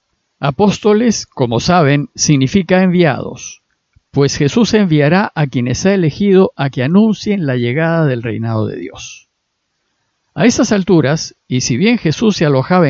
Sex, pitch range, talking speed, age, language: male, 140-195 Hz, 140 wpm, 50-69, Spanish